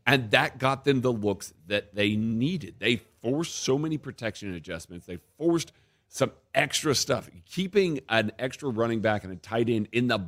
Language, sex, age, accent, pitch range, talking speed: English, male, 40-59, American, 100-135 Hz, 180 wpm